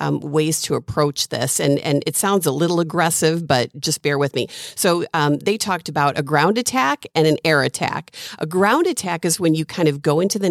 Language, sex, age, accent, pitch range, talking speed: English, female, 40-59, American, 150-190 Hz, 230 wpm